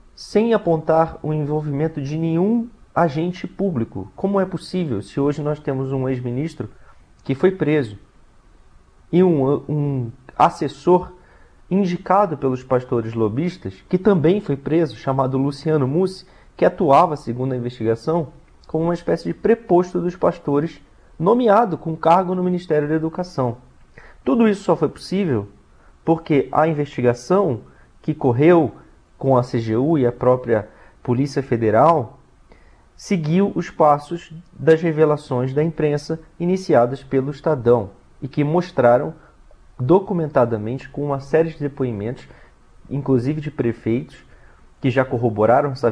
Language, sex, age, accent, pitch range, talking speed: Portuguese, male, 40-59, Brazilian, 120-165 Hz, 130 wpm